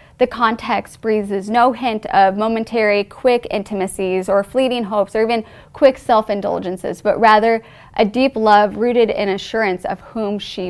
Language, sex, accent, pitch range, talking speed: English, female, American, 200-245 Hz, 150 wpm